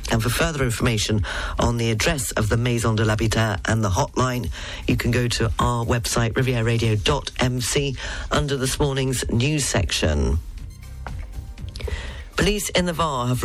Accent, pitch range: British, 110-140 Hz